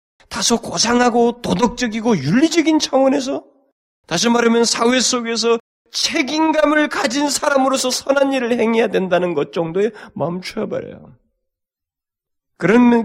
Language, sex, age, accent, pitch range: Korean, male, 40-59, native, 170-255 Hz